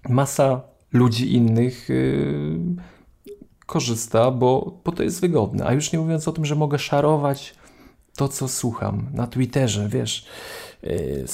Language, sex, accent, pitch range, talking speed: Polish, male, native, 110-150 Hz, 140 wpm